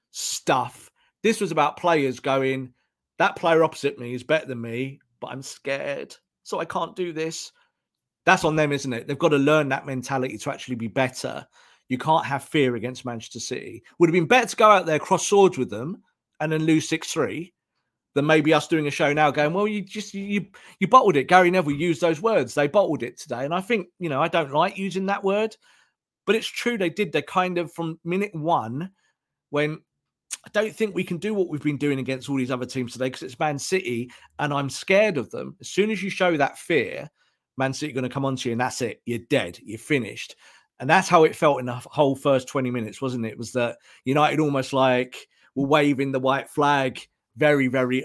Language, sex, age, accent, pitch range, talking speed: English, male, 40-59, British, 130-180 Hz, 225 wpm